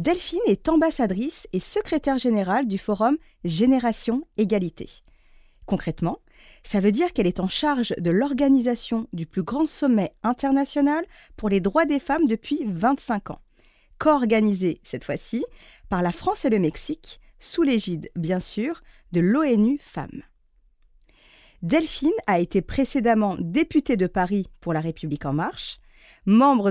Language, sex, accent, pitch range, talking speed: French, female, French, 185-275 Hz, 140 wpm